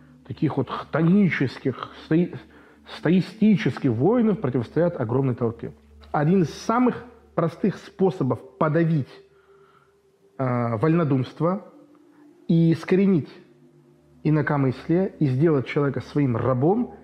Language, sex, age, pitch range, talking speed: Russian, male, 40-59, 125-175 Hz, 85 wpm